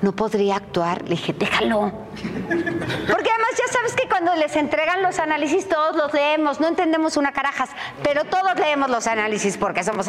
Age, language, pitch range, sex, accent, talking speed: 40-59, Spanish, 215-310 Hz, female, Mexican, 180 wpm